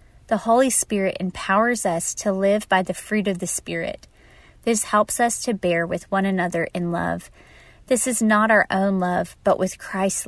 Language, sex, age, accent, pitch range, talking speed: English, female, 20-39, American, 180-215 Hz, 185 wpm